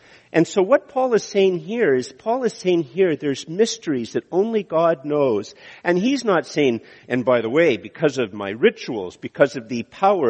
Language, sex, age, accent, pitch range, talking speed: English, male, 50-69, American, 135-190 Hz, 200 wpm